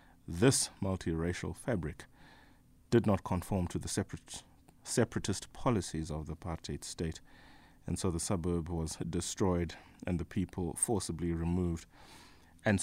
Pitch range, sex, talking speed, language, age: 90-110 Hz, male, 120 wpm, English, 30-49